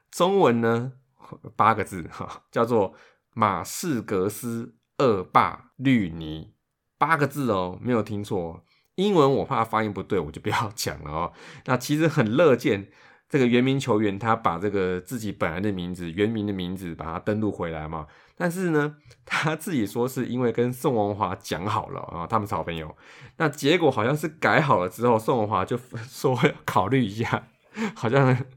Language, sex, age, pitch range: Chinese, male, 20-39, 100-135 Hz